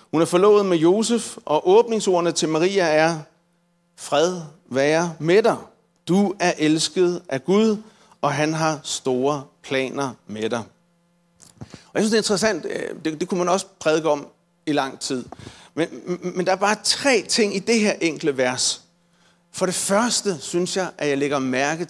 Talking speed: 170 wpm